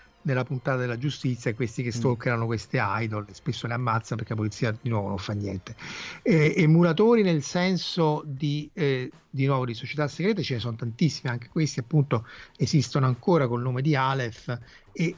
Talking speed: 185 wpm